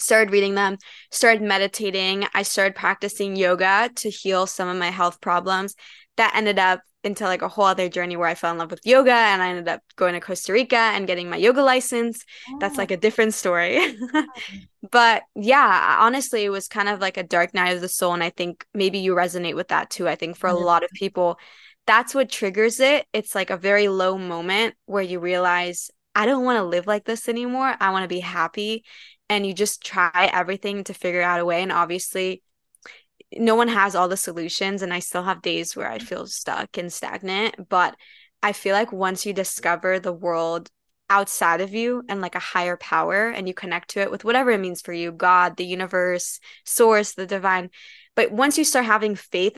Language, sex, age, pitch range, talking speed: English, female, 20-39, 180-215 Hz, 210 wpm